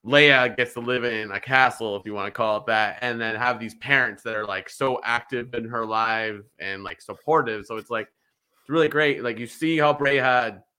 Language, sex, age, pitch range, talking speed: English, male, 20-39, 115-155 Hz, 230 wpm